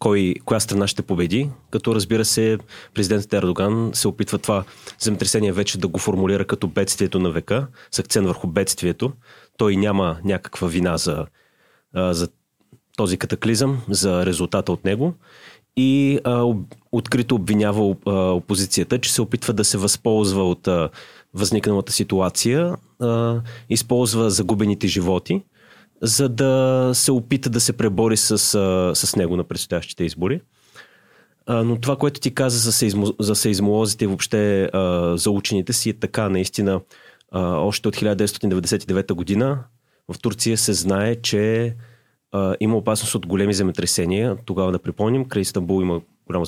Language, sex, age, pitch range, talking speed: Bulgarian, male, 30-49, 95-115 Hz, 140 wpm